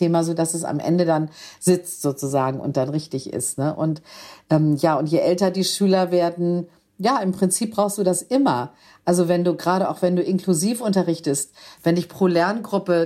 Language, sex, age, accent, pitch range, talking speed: German, female, 50-69, German, 150-180 Hz, 195 wpm